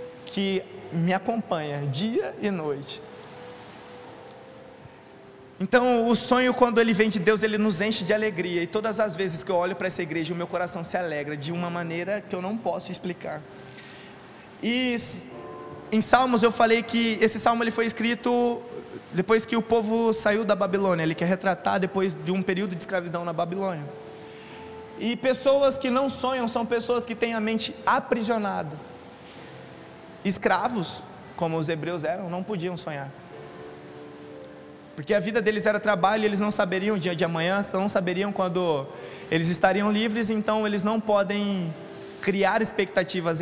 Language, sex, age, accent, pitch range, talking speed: Portuguese, male, 20-39, Brazilian, 175-215 Hz, 160 wpm